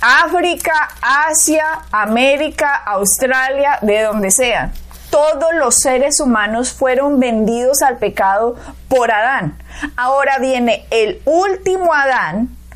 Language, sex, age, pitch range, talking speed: Spanish, female, 20-39, 240-310 Hz, 105 wpm